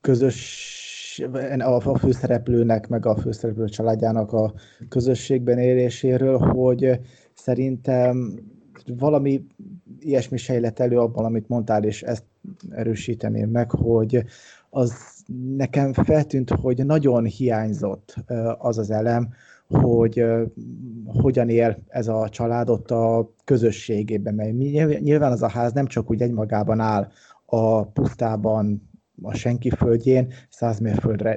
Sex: male